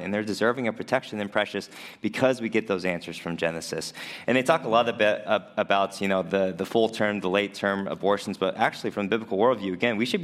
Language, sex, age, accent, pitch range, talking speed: English, male, 20-39, American, 90-110 Hz, 240 wpm